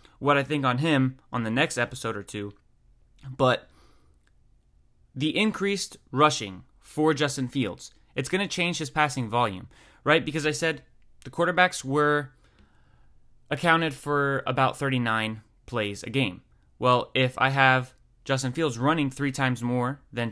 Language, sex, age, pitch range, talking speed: English, male, 20-39, 120-155 Hz, 150 wpm